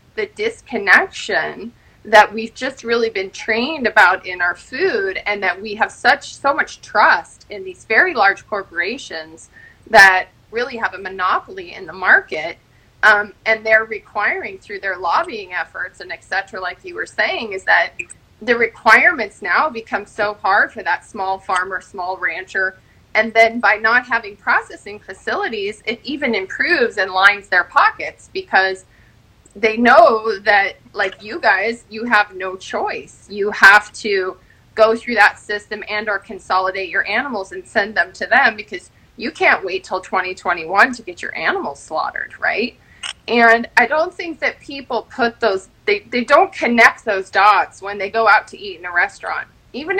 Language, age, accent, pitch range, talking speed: English, 30-49, American, 195-260 Hz, 170 wpm